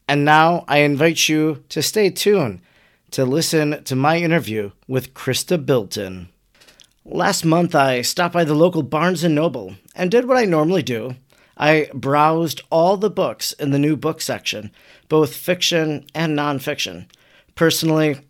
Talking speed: 155 wpm